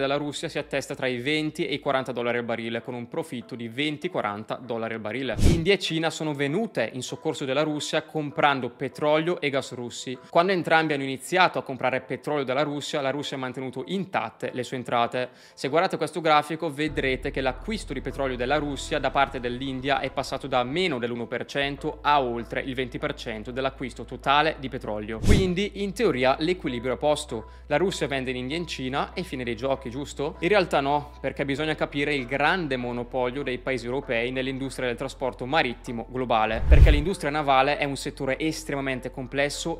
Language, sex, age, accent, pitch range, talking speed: Italian, male, 20-39, native, 125-150 Hz, 185 wpm